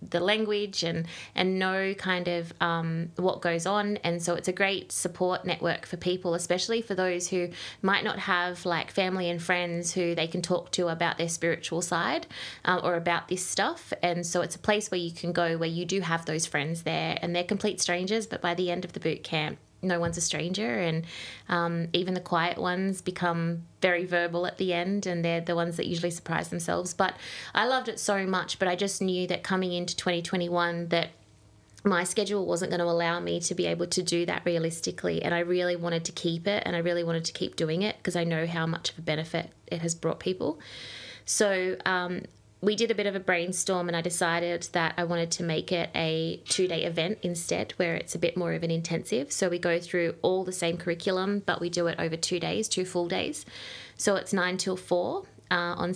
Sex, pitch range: female, 170-185 Hz